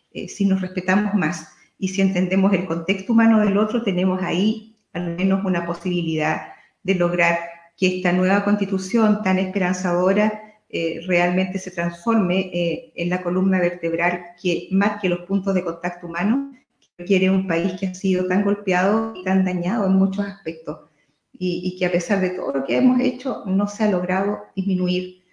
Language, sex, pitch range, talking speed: Spanish, female, 175-200 Hz, 180 wpm